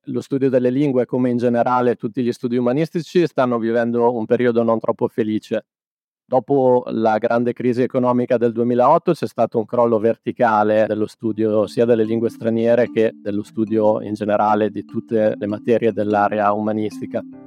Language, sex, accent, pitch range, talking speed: Italian, male, native, 110-125 Hz, 160 wpm